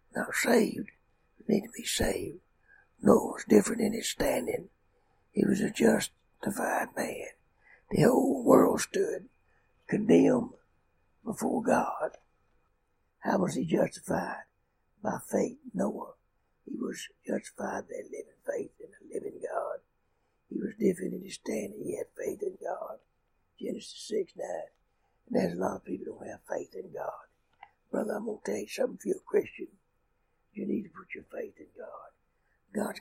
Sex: male